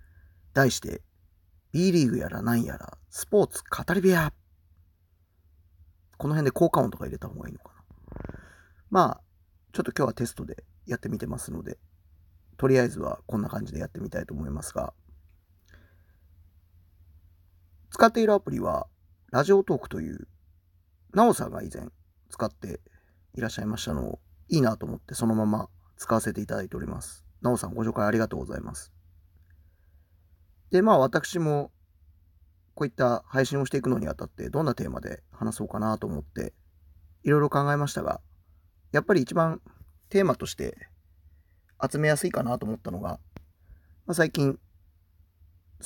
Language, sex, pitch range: Japanese, male, 80-125 Hz